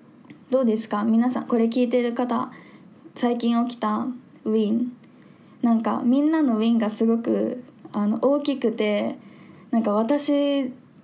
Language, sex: Japanese, female